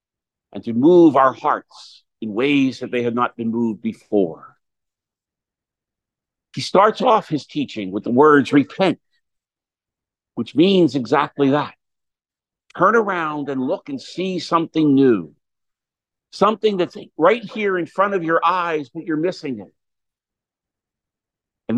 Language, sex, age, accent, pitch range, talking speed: English, male, 50-69, American, 145-195 Hz, 135 wpm